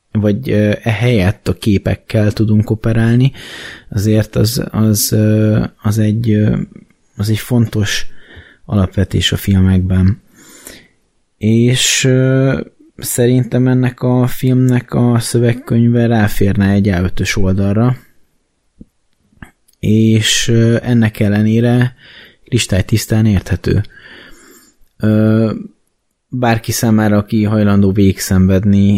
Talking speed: 85 wpm